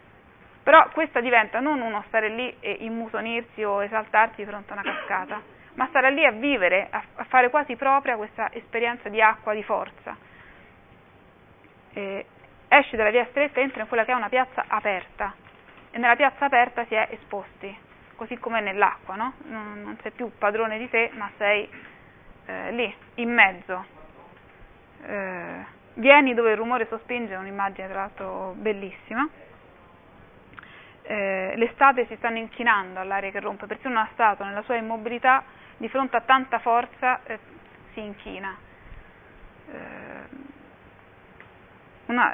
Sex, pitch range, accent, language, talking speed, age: female, 210-250 Hz, native, Italian, 145 wpm, 20-39